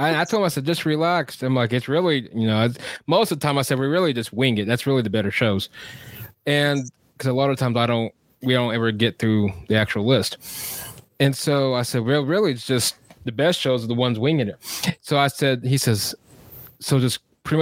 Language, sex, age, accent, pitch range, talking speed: English, male, 20-39, American, 125-160 Hz, 235 wpm